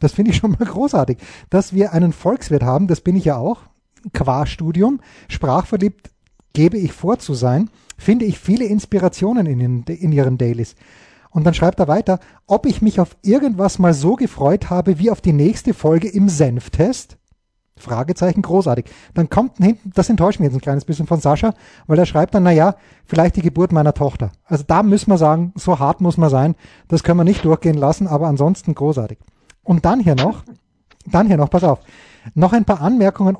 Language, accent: German, German